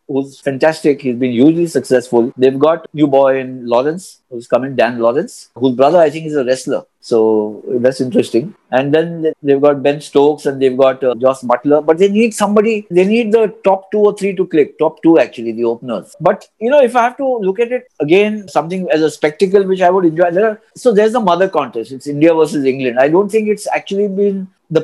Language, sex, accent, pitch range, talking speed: English, male, Indian, 135-195 Hz, 220 wpm